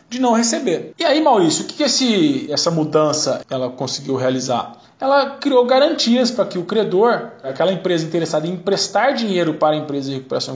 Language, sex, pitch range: Portuguese, male, 160-240 Hz